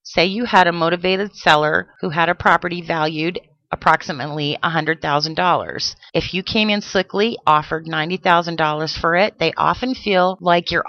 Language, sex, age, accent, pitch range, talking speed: English, female, 40-59, American, 160-190 Hz, 150 wpm